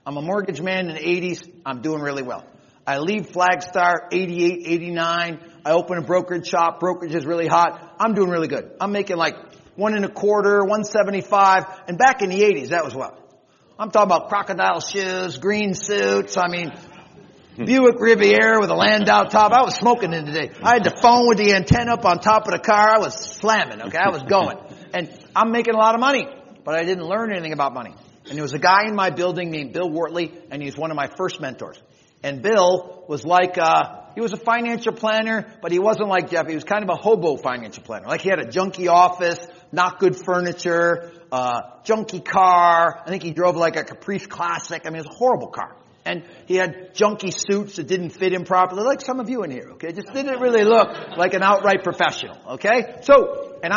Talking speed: 220 wpm